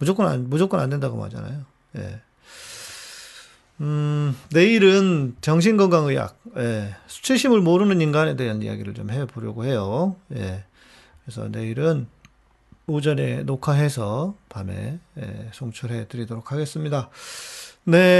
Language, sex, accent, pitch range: Korean, male, native, 125-165 Hz